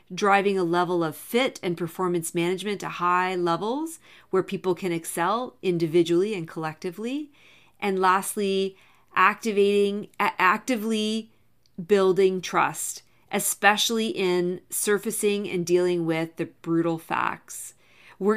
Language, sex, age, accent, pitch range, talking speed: English, female, 40-59, American, 175-205 Hz, 110 wpm